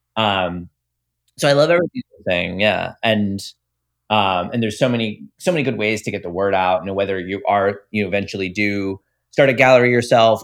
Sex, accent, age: male, American, 30-49